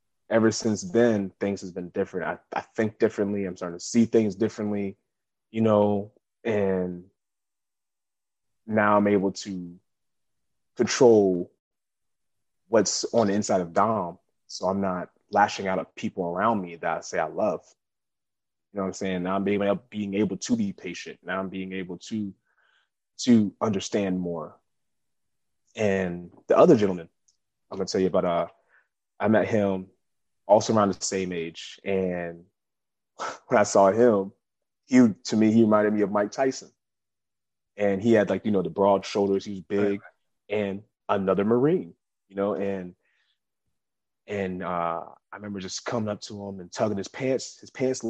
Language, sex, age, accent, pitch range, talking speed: English, male, 20-39, American, 95-115 Hz, 165 wpm